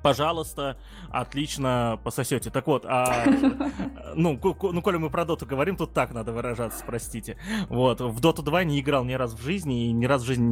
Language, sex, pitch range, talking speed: Russian, male, 115-155 Hz, 200 wpm